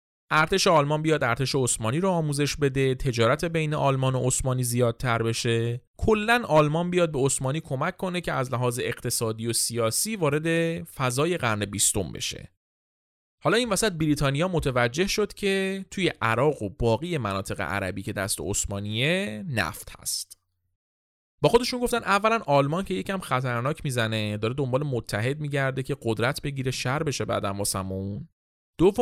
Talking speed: 145 wpm